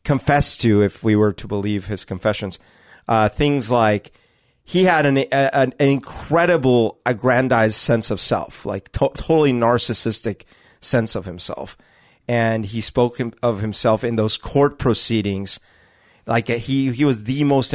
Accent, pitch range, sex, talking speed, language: American, 105-130 Hz, male, 150 wpm, English